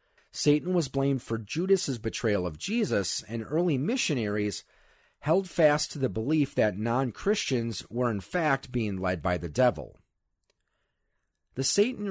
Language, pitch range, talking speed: English, 100-160 Hz, 140 wpm